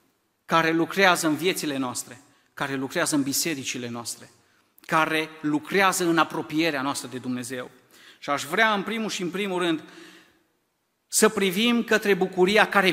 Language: Romanian